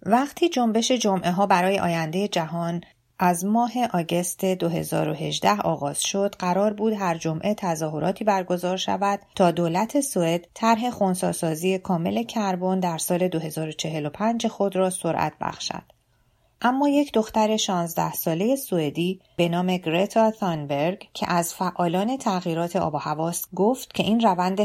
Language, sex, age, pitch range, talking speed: Persian, female, 30-49, 165-215 Hz, 130 wpm